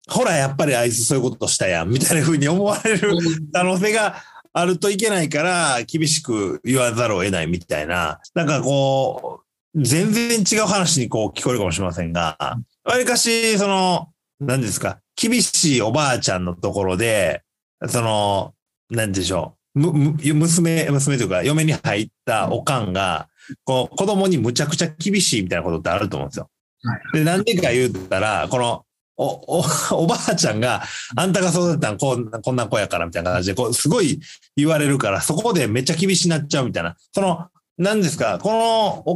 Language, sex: Japanese, male